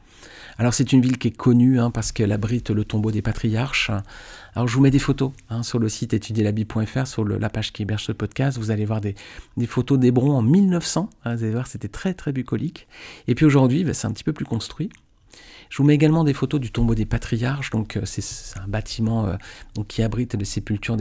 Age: 40-59